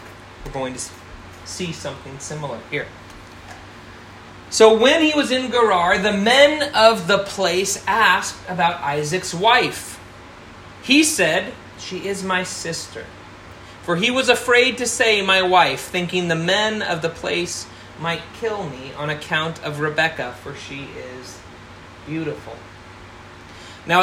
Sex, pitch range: male, 125-185 Hz